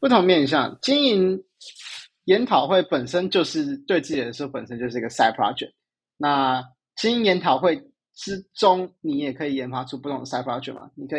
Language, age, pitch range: Chinese, 20-39, 125-170 Hz